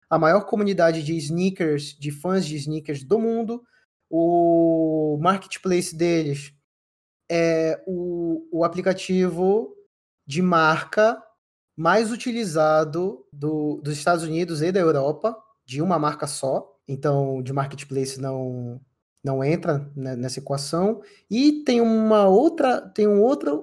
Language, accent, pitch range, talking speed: Portuguese, Brazilian, 160-225 Hz, 125 wpm